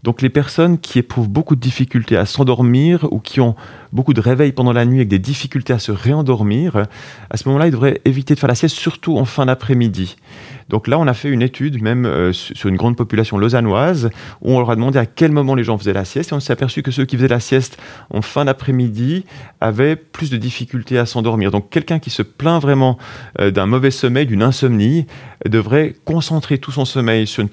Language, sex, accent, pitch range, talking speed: French, male, French, 110-140 Hz, 225 wpm